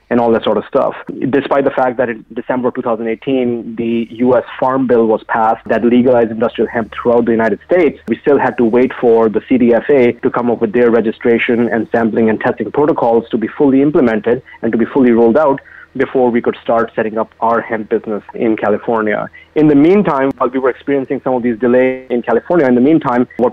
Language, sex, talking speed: English, male, 215 wpm